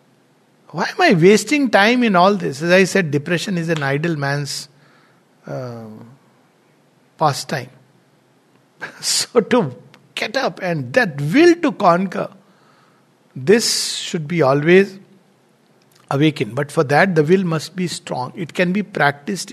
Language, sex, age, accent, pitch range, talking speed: English, male, 60-79, Indian, 145-190 Hz, 135 wpm